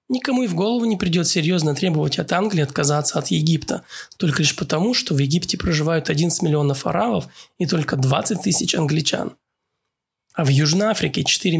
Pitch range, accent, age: 150-185 Hz, native, 20-39